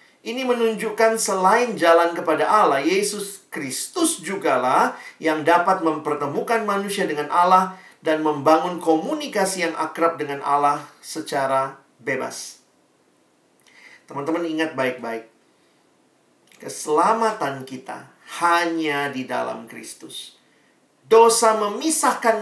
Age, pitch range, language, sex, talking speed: 50-69, 135-175 Hz, Indonesian, male, 95 wpm